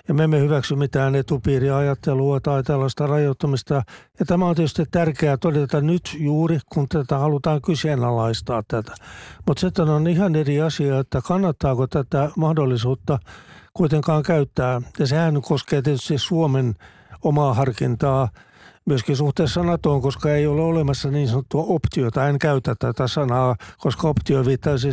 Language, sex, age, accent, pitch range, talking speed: Finnish, male, 60-79, native, 135-155 Hz, 140 wpm